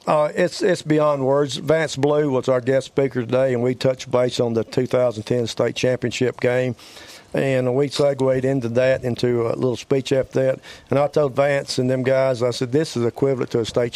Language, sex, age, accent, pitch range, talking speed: English, male, 50-69, American, 120-135 Hz, 205 wpm